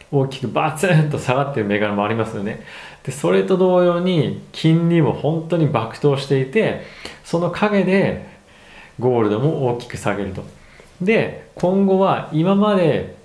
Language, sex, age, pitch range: Japanese, male, 40-59, 110-170 Hz